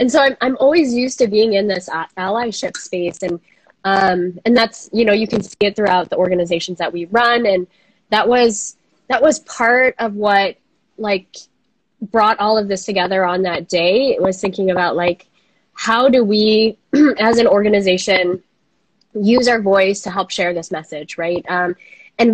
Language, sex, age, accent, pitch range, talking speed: English, female, 20-39, American, 180-220 Hz, 180 wpm